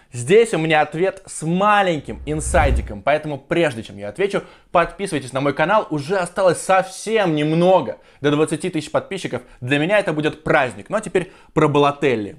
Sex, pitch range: male, 140-185 Hz